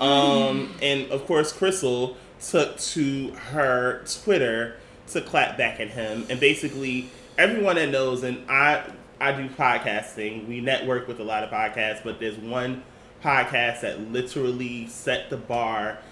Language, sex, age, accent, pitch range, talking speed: English, male, 20-39, American, 110-130 Hz, 150 wpm